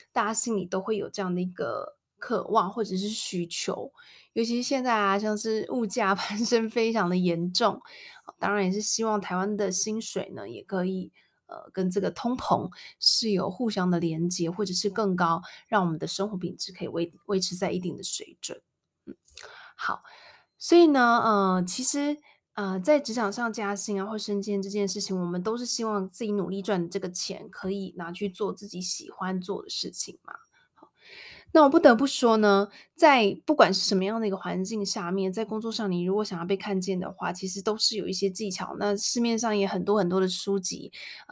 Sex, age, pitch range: female, 20-39, 190-225 Hz